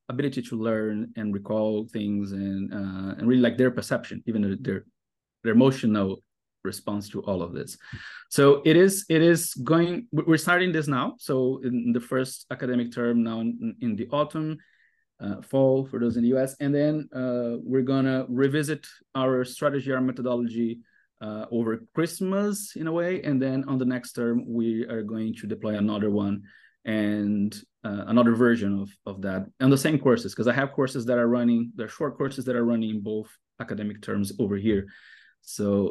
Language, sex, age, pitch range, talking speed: English, male, 30-49, 110-135 Hz, 185 wpm